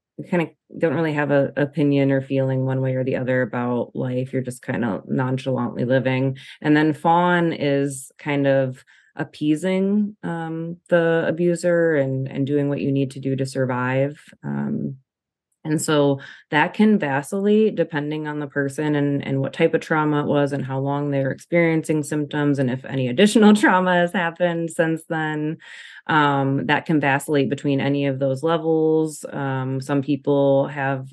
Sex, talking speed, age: female, 170 wpm, 20-39